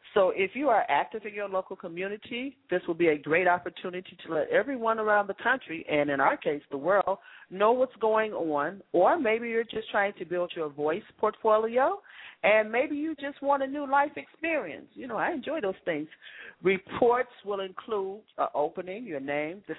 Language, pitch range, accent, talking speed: English, 165-220 Hz, American, 195 wpm